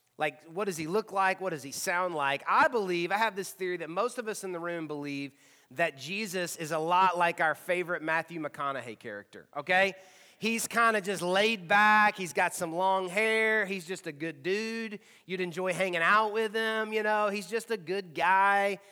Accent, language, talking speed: American, English, 210 wpm